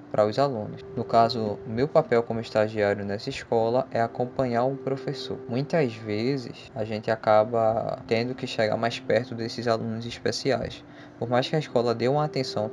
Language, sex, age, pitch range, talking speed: Portuguese, female, 20-39, 110-130 Hz, 170 wpm